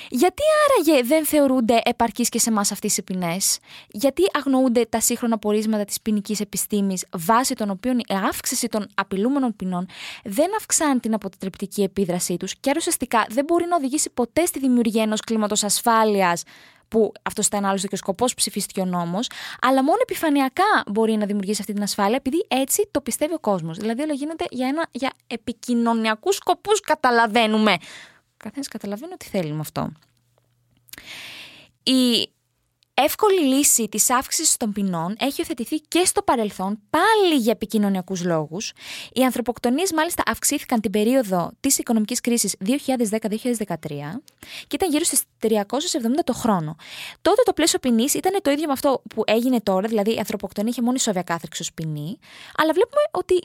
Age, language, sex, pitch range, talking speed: 20-39, Greek, female, 210-300 Hz, 155 wpm